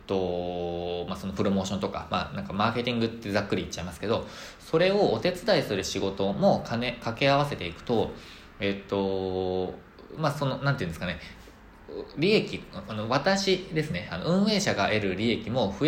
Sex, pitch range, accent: male, 95-130 Hz, native